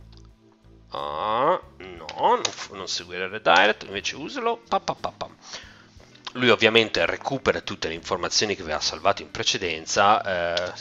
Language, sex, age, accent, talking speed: Italian, male, 40-59, native, 120 wpm